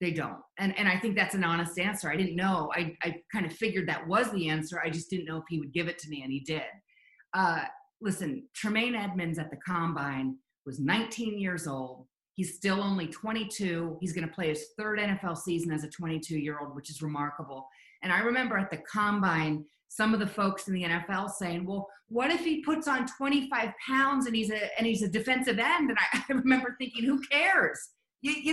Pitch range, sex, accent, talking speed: 160-210 Hz, female, American, 215 wpm